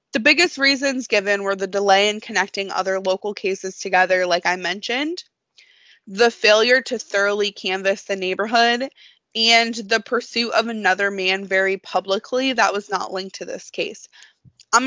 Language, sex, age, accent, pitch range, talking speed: English, female, 20-39, American, 190-235 Hz, 155 wpm